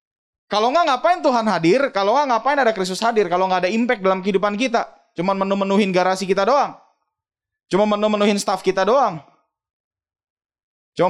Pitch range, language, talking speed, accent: 190-275 Hz, Indonesian, 170 wpm, native